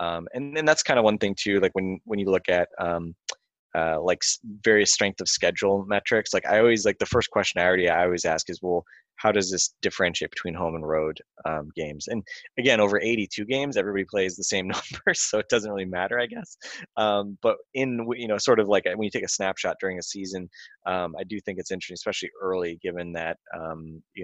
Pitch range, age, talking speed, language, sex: 85-100 Hz, 20-39, 230 wpm, English, male